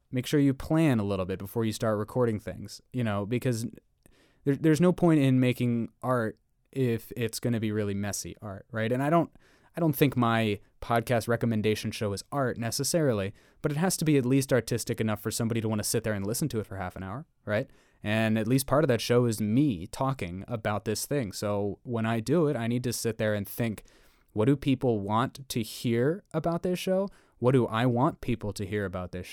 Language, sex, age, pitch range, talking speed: English, male, 20-39, 105-125 Hz, 230 wpm